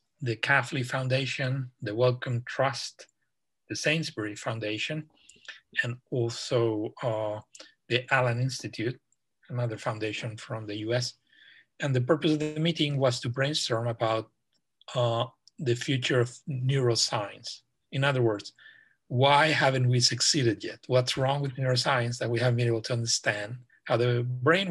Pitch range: 115-135 Hz